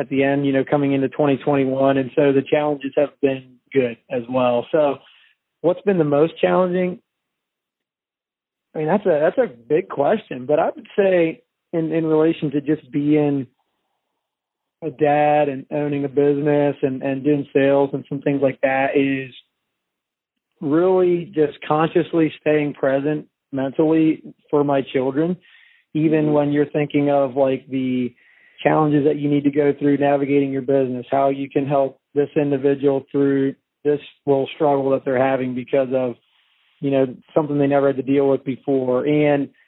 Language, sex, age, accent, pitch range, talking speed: English, male, 30-49, American, 135-150 Hz, 165 wpm